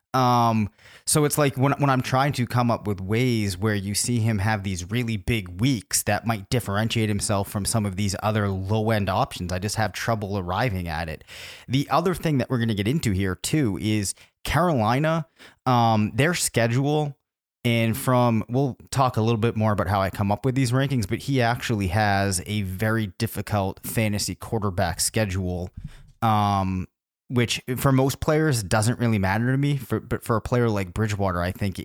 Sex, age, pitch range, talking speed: male, 30-49, 100-125 Hz, 190 wpm